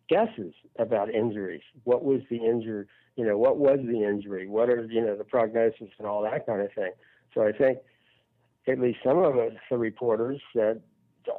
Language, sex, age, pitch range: English, male, 60-79, 105-120 Hz